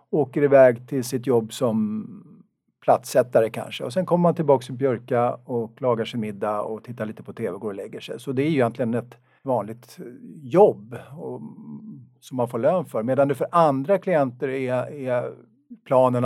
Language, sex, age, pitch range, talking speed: Swedish, male, 50-69, 110-135 Hz, 190 wpm